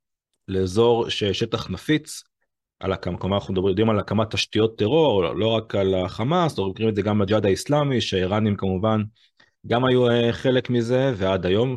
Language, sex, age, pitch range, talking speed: Hebrew, male, 30-49, 95-115 Hz, 150 wpm